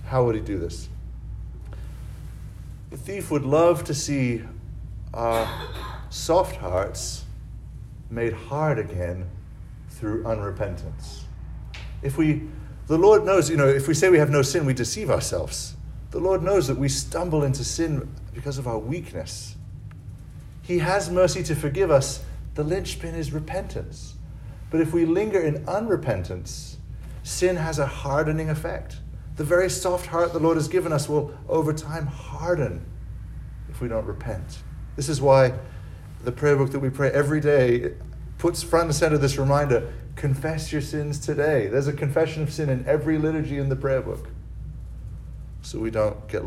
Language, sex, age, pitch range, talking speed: English, male, 40-59, 110-155 Hz, 160 wpm